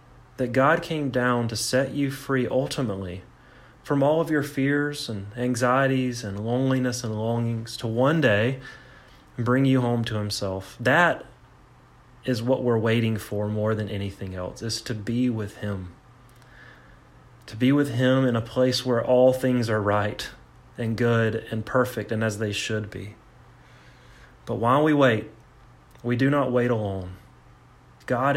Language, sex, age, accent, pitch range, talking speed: English, male, 30-49, American, 110-130 Hz, 155 wpm